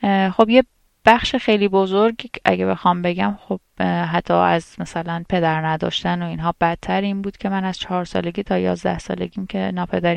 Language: Persian